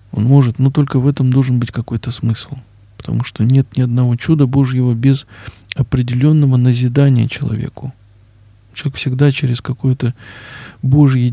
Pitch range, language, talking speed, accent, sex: 120-140 Hz, Russian, 140 wpm, native, male